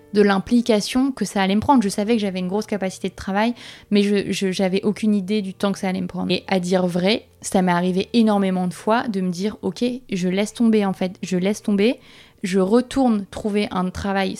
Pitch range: 185-215 Hz